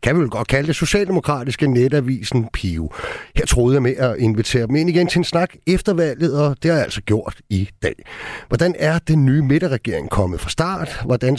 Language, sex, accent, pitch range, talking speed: Danish, male, native, 110-155 Hz, 210 wpm